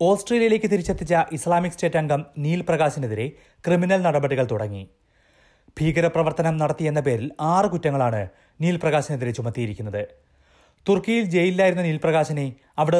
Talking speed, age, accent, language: 90 wpm, 30-49, native, Malayalam